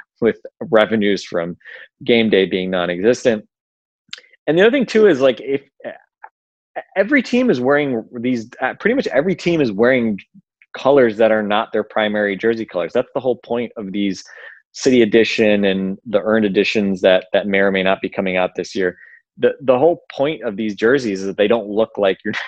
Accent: American